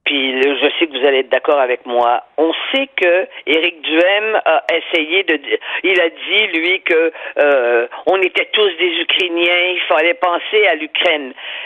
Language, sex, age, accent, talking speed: French, female, 50-69, French, 180 wpm